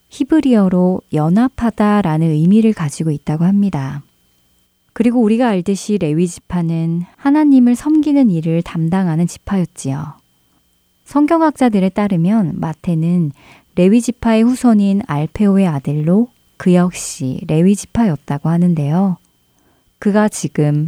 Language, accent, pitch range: Korean, native, 155-215 Hz